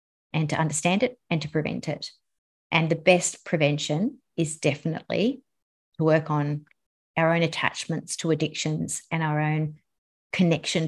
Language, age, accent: English, 30-49, Australian